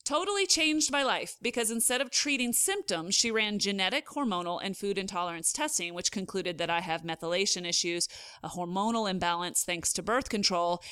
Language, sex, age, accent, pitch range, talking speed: English, female, 30-49, American, 180-225 Hz, 170 wpm